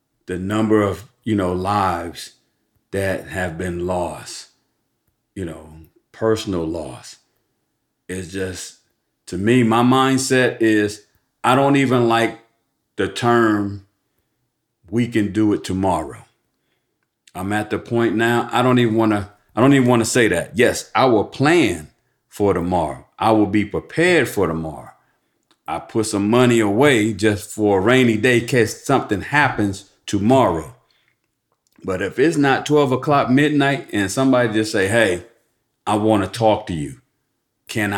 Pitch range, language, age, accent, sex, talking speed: 100-120 Hz, English, 40-59, American, male, 150 wpm